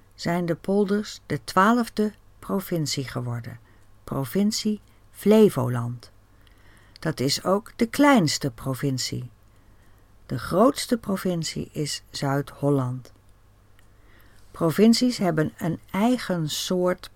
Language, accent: Dutch, Dutch